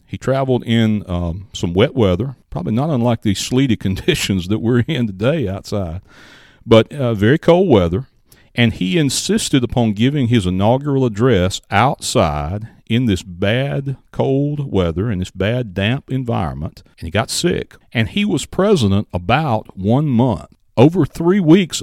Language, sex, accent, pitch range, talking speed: English, male, American, 95-130 Hz, 155 wpm